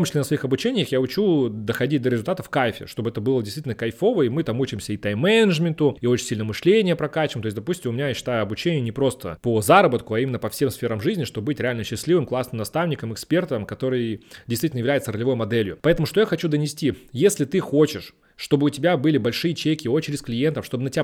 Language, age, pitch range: Russian, 30-49, 120-155 Hz